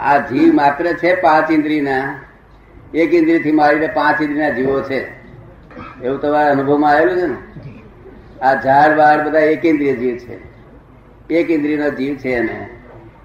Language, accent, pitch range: Gujarati, native, 135-165 Hz